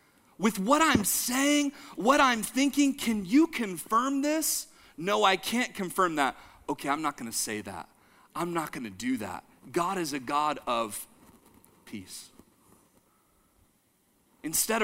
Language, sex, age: English, male, 40-59